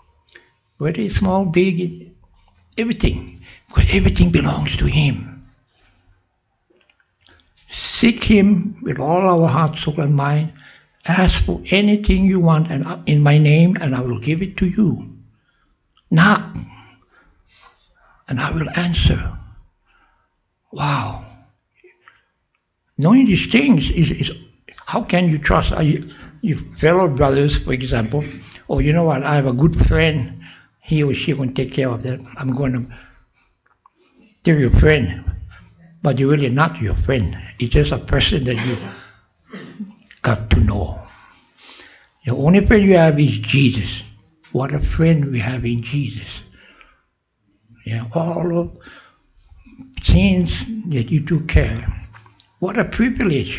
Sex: male